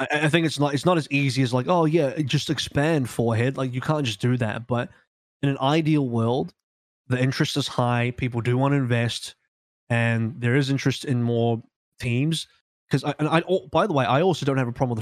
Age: 20-39